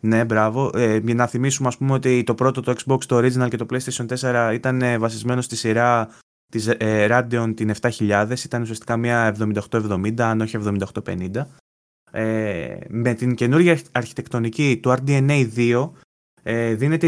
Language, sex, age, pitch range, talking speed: Greek, male, 20-39, 115-140 Hz, 155 wpm